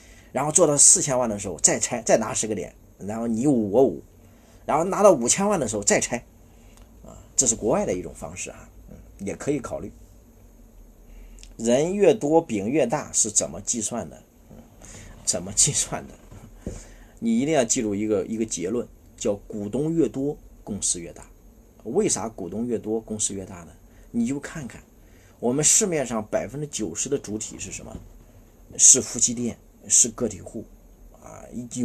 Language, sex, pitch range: Chinese, male, 95-115 Hz